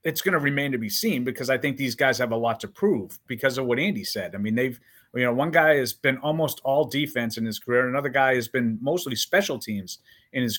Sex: male